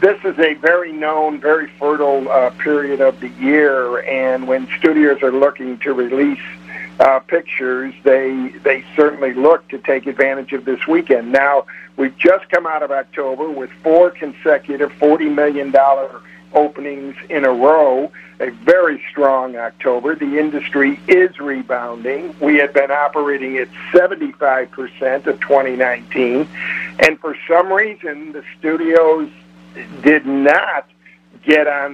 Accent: American